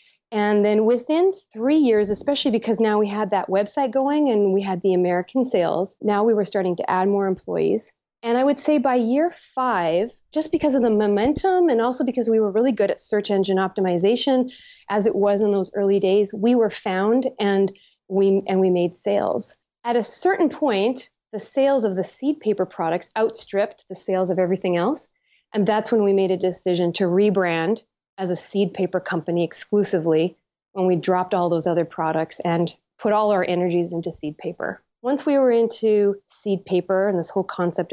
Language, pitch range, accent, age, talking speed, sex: English, 185-230 Hz, American, 30-49, 195 wpm, female